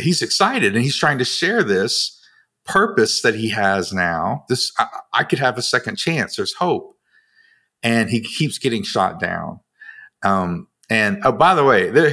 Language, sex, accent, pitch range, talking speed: English, male, American, 110-160 Hz, 180 wpm